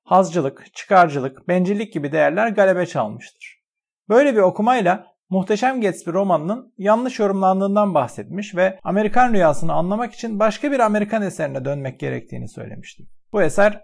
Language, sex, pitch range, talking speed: Turkish, male, 180-220 Hz, 130 wpm